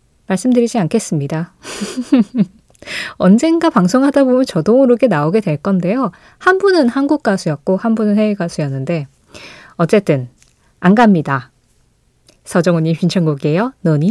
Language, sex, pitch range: Korean, female, 160-240 Hz